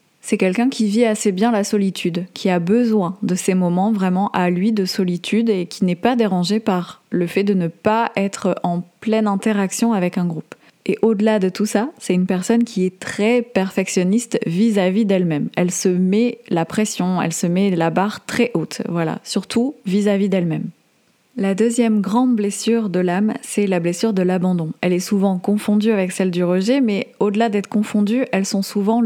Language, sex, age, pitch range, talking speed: French, female, 20-39, 185-220 Hz, 190 wpm